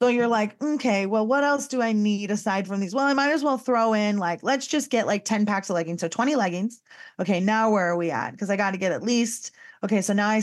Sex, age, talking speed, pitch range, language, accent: female, 30-49, 280 wpm, 210-265 Hz, English, American